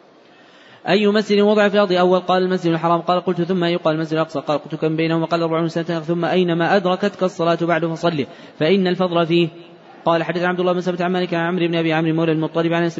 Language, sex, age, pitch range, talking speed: Arabic, male, 20-39, 165-175 Hz, 225 wpm